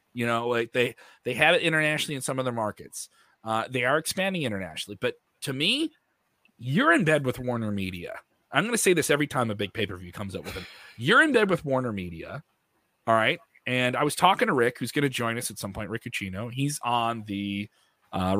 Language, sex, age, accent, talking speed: English, male, 30-49, American, 225 wpm